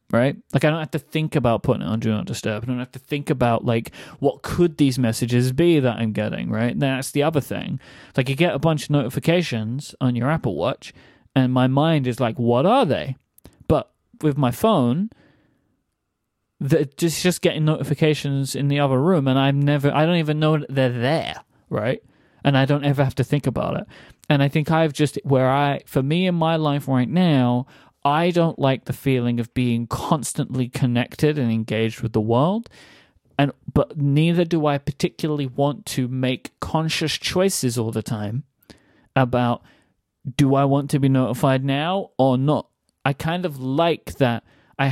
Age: 30-49